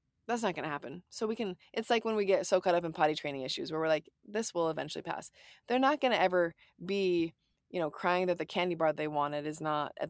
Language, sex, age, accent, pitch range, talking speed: English, female, 20-39, American, 165-215 Hz, 265 wpm